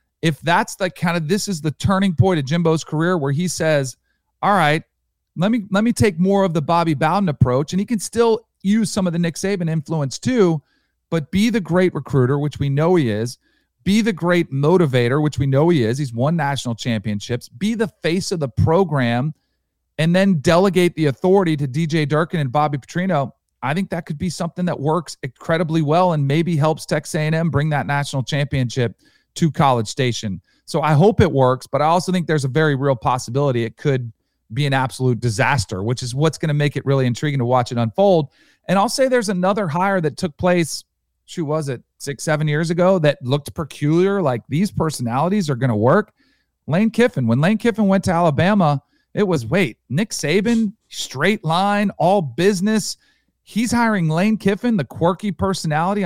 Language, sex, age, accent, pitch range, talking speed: English, male, 40-59, American, 140-190 Hz, 200 wpm